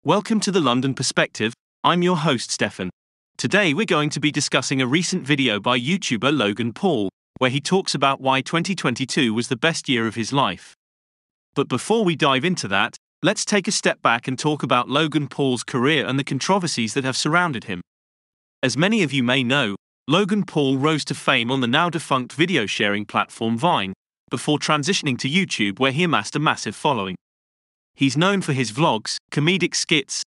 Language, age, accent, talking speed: English, 30-49, British, 185 wpm